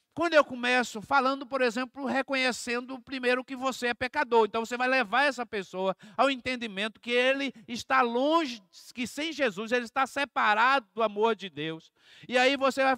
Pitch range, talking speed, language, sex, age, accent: 185-250 Hz, 175 wpm, Portuguese, male, 50-69, Brazilian